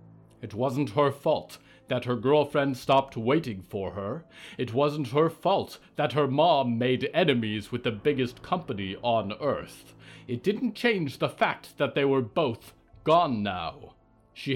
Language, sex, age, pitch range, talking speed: English, male, 30-49, 100-150 Hz, 155 wpm